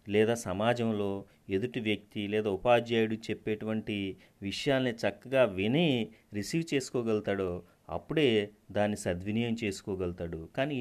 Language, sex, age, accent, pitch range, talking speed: Telugu, male, 30-49, native, 105-135 Hz, 95 wpm